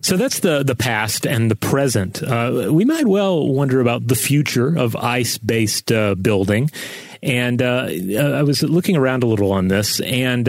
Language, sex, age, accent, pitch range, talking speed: English, male, 30-49, American, 110-140 Hz, 175 wpm